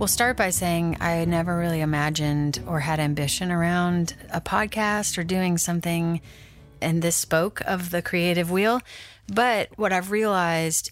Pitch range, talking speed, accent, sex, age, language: 160-185 Hz, 155 wpm, American, female, 30-49, English